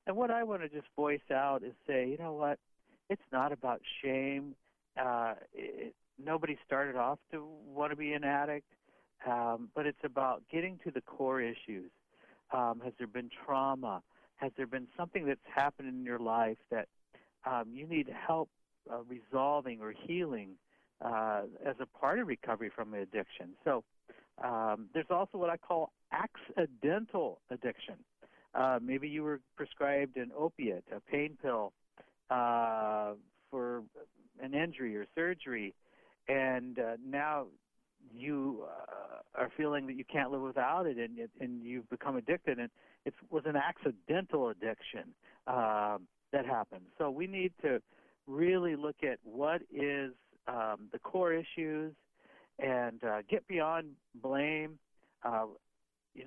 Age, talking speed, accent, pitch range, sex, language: 60-79, 150 wpm, American, 120-155 Hz, male, English